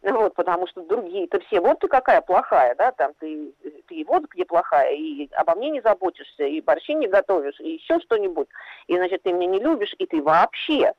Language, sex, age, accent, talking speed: Russian, female, 40-59, native, 205 wpm